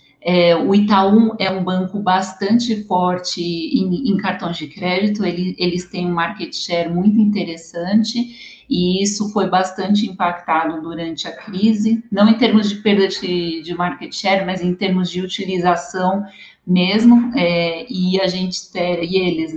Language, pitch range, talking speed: Portuguese, 175-215 Hz, 140 wpm